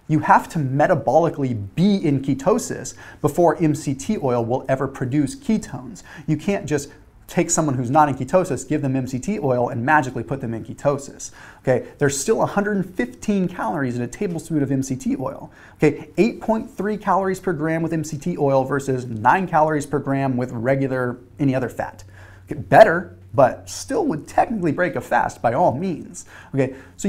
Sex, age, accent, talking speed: male, 30-49, American, 170 wpm